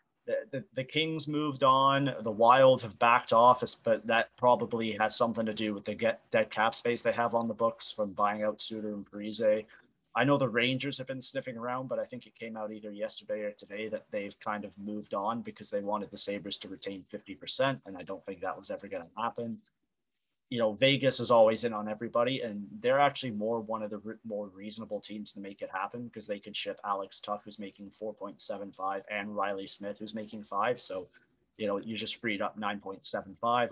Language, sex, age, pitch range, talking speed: English, male, 30-49, 105-120 Hz, 215 wpm